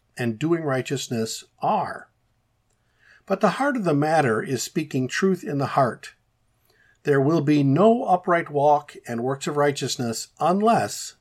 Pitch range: 120-165 Hz